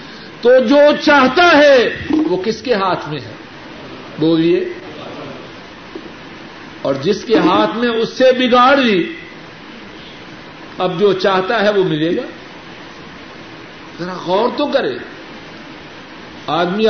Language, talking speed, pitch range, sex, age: Urdu, 115 wpm, 190-280 Hz, male, 60-79